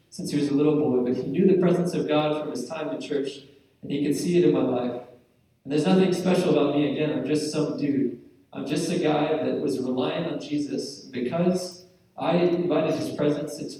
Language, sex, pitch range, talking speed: English, male, 145-170 Hz, 225 wpm